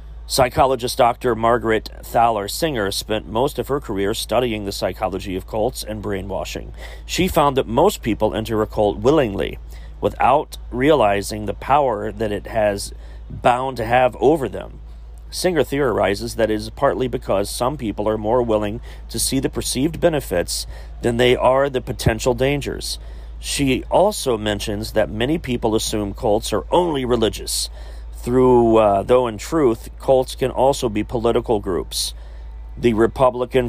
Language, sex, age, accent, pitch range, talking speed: English, male, 40-59, American, 95-125 Hz, 150 wpm